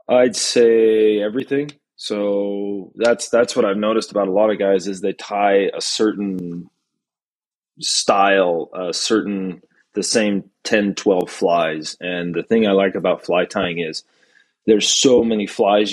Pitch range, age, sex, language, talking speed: 95-110 Hz, 20-39, male, English, 150 wpm